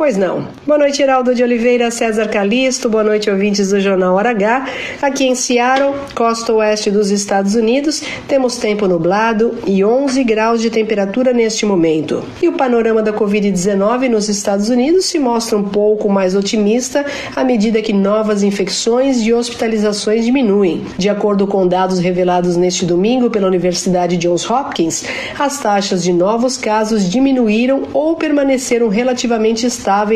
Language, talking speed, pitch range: Portuguese, 155 wpm, 200-250 Hz